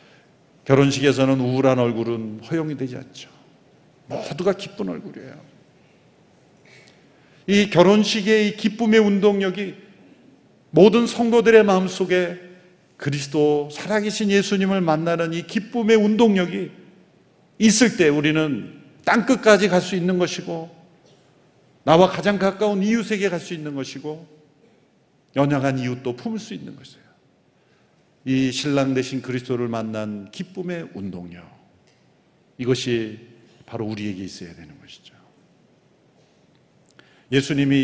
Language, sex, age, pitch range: Korean, male, 50-69, 125-185 Hz